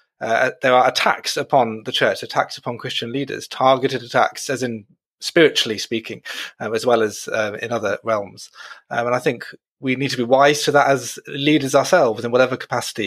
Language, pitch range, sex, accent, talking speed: English, 115-145 Hz, male, British, 195 wpm